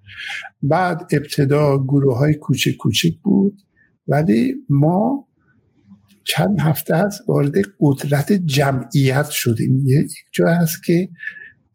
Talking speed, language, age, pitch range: 95 wpm, Persian, 60-79, 130-165 Hz